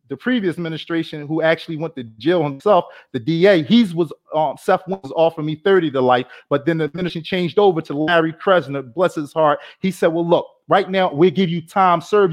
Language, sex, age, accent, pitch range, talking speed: English, male, 30-49, American, 155-190 Hz, 215 wpm